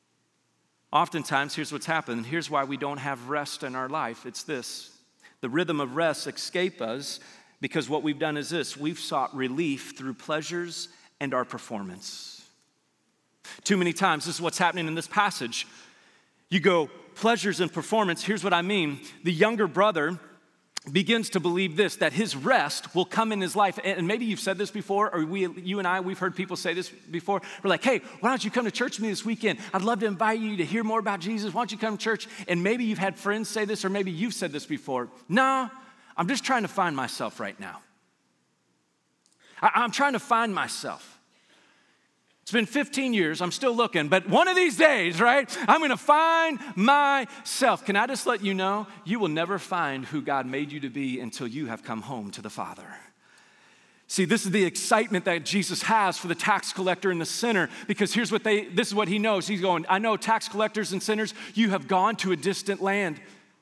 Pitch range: 165-220 Hz